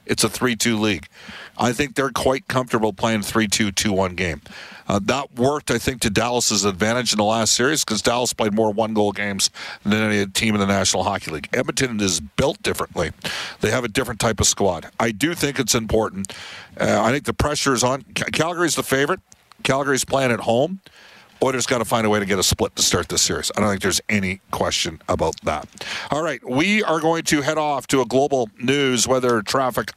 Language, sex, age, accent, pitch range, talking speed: English, male, 50-69, American, 110-135 Hz, 210 wpm